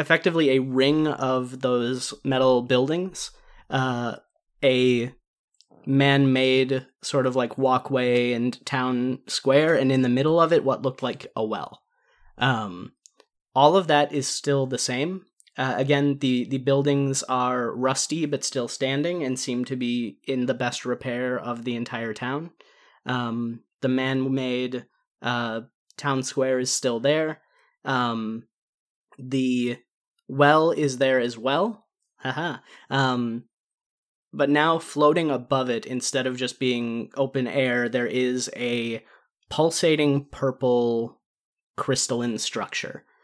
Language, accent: English, American